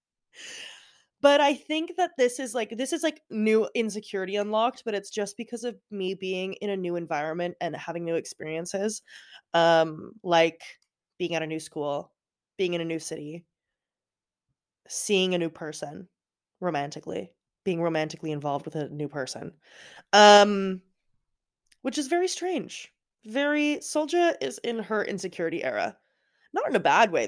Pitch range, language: 170-220 Hz, English